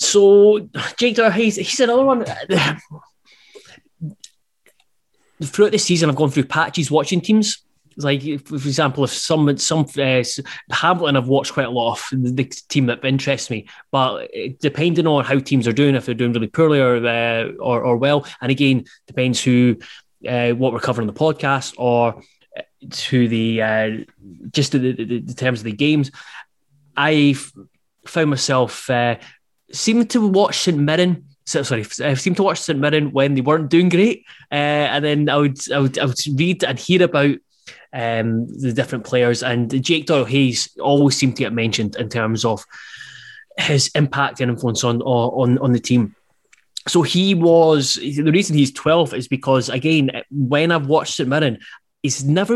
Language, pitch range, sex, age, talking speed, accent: English, 125-160 Hz, male, 20-39, 170 wpm, British